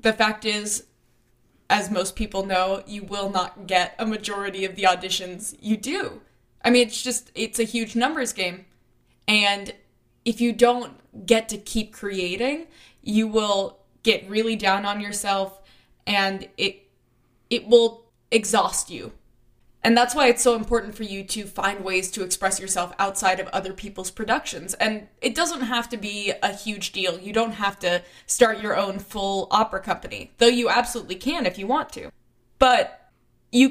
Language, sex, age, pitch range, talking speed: English, female, 10-29, 190-230 Hz, 170 wpm